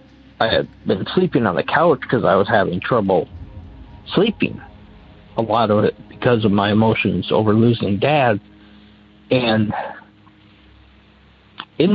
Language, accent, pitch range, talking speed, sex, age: English, American, 105-125 Hz, 130 wpm, male, 50-69